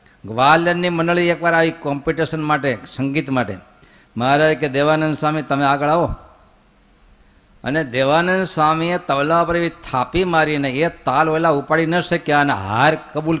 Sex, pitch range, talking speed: male, 120-160 Hz, 45 wpm